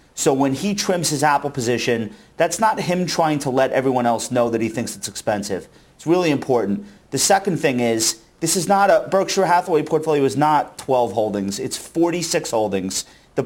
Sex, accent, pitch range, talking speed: male, American, 115-160 Hz, 190 wpm